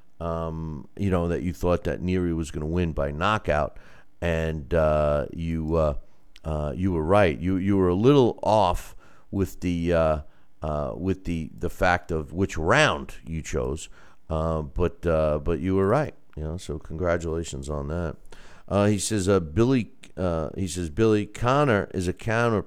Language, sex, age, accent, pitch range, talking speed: English, male, 50-69, American, 80-100 Hz, 175 wpm